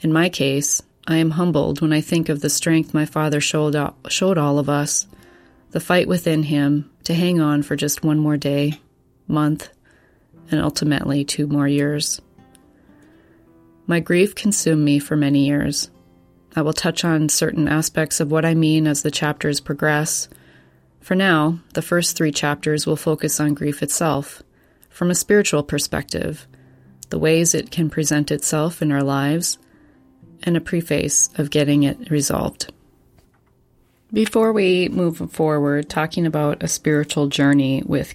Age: 30-49